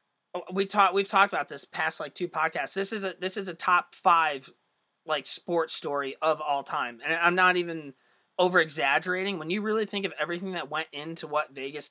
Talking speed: 205 wpm